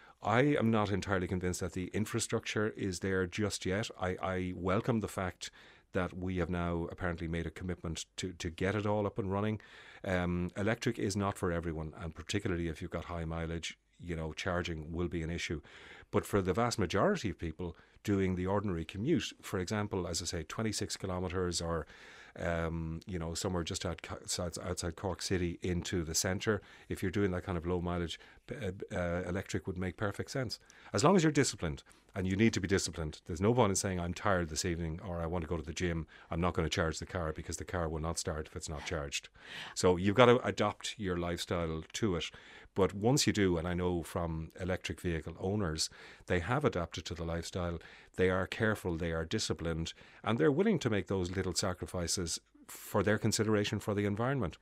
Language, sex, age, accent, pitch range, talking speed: English, male, 30-49, Irish, 85-100 Hz, 205 wpm